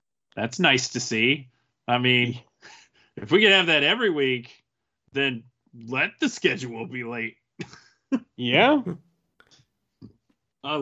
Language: English